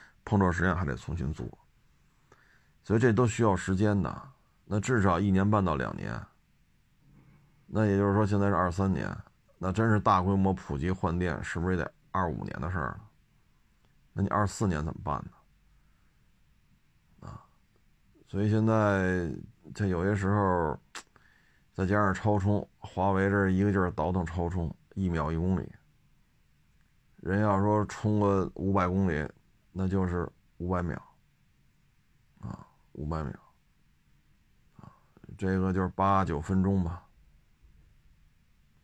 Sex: male